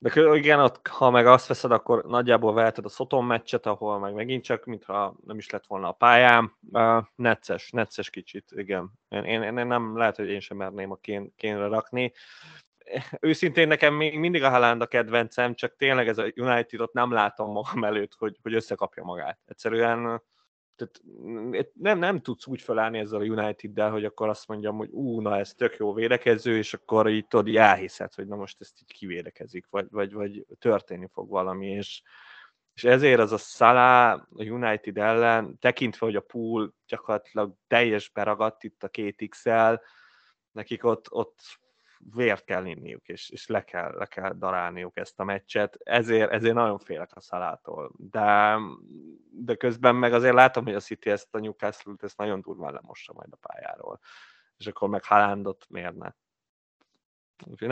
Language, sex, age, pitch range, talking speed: Hungarian, male, 20-39, 105-120 Hz, 175 wpm